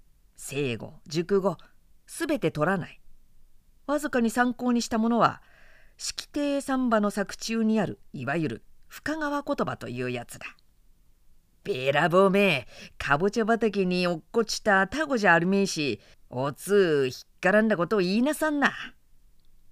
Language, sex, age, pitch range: Japanese, female, 40-59, 165-235 Hz